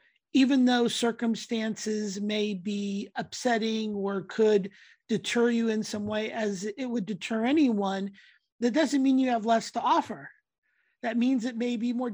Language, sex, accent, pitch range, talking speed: English, male, American, 205-245 Hz, 160 wpm